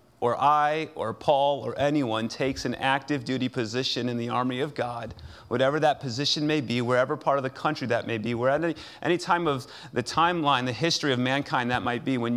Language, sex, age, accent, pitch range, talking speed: English, male, 30-49, American, 120-155 Hz, 210 wpm